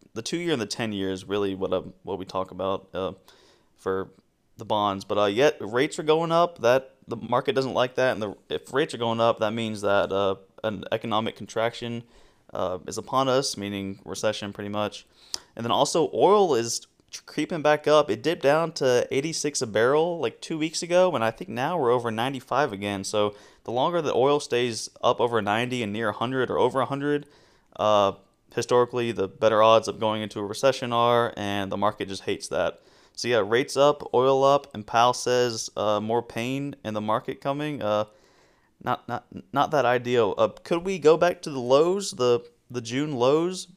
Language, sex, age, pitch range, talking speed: English, male, 20-39, 110-145 Hz, 205 wpm